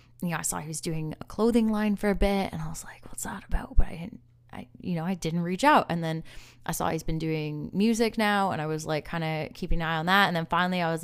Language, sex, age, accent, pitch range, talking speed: English, female, 20-39, American, 150-200 Hz, 300 wpm